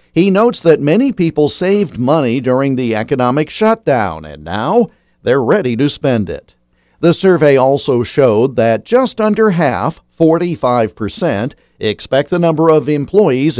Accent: American